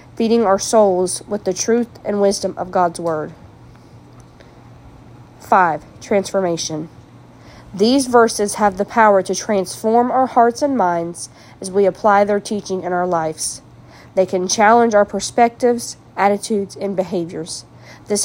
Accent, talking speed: American, 135 wpm